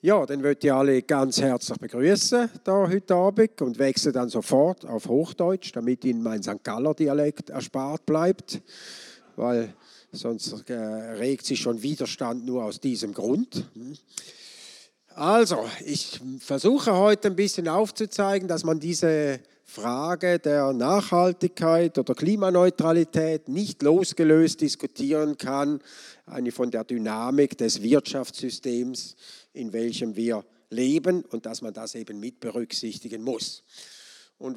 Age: 50-69